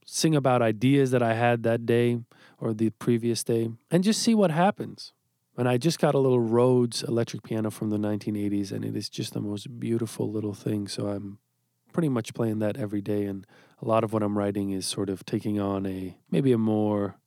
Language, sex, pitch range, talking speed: English, male, 110-135 Hz, 215 wpm